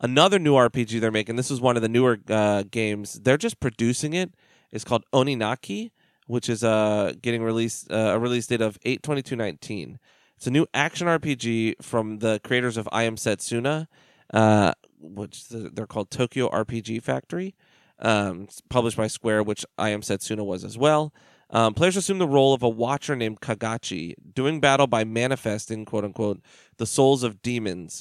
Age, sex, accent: 30-49, male, American